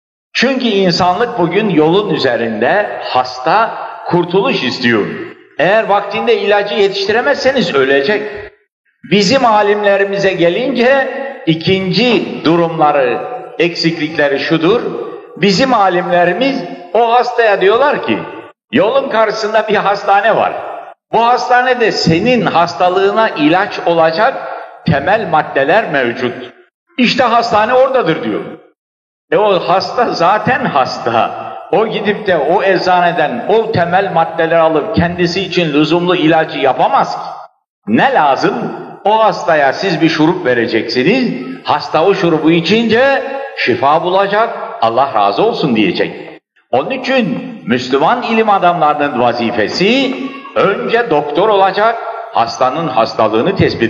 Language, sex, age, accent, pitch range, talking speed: Turkish, male, 60-79, native, 165-235 Hz, 105 wpm